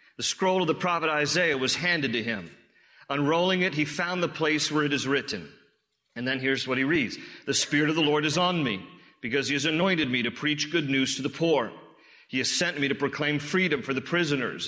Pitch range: 135-175 Hz